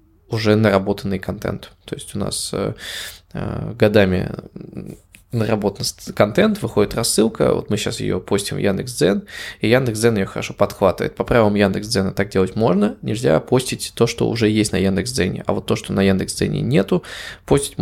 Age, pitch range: 20-39, 95-115 Hz